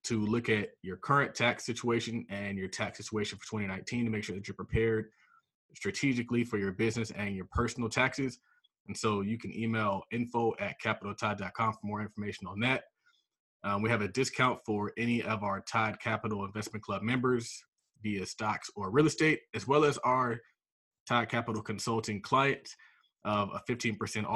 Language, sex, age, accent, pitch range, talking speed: English, male, 20-39, American, 105-125 Hz, 170 wpm